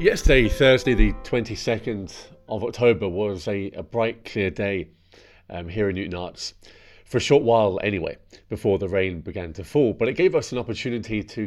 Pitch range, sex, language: 100-120 Hz, male, English